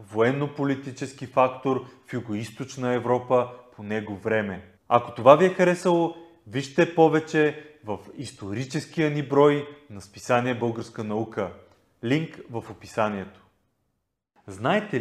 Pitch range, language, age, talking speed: 115-155 Hz, Bulgarian, 30-49, 110 wpm